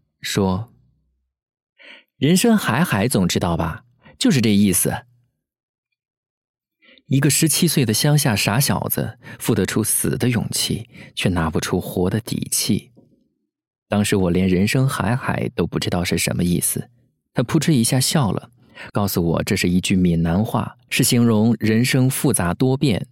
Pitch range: 100-140 Hz